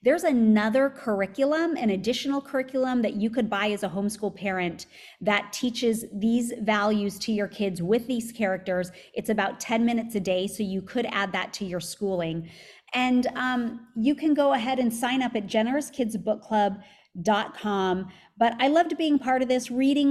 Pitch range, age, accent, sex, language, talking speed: 205-255 Hz, 30-49, American, female, English, 185 wpm